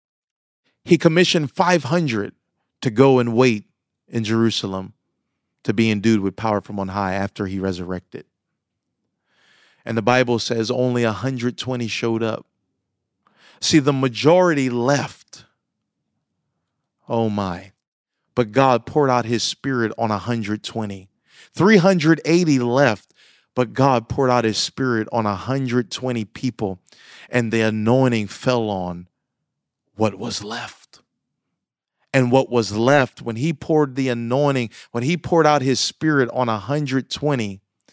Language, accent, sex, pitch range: English, American, male, 110-140 Hz